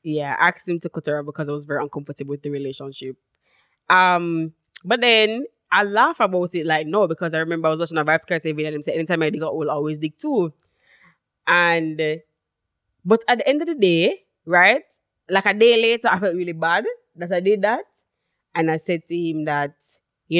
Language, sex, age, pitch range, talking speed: English, female, 20-39, 155-210 Hz, 210 wpm